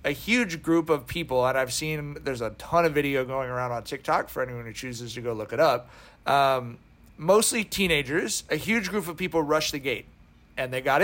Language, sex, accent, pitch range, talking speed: English, male, American, 125-155 Hz, 215 wpm